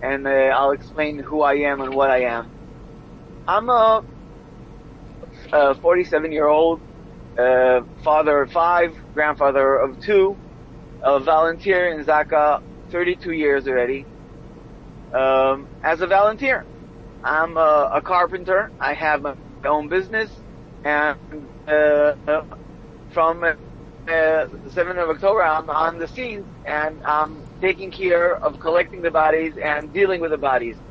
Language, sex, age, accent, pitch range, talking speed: English, male, 30-49, American, 145-170 Hz, 125 wpm